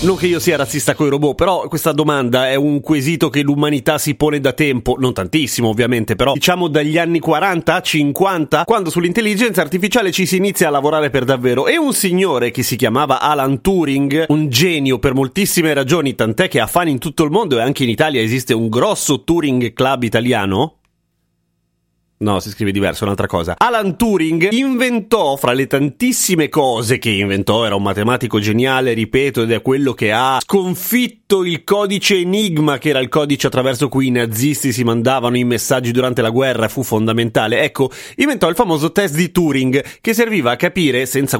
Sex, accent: male, native